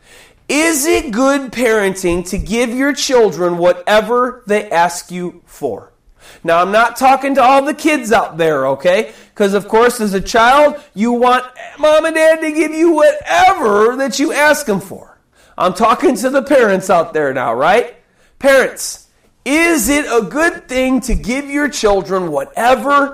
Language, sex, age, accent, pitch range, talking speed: English, male, 40-59, American, 175-260 Hz, 165 wpm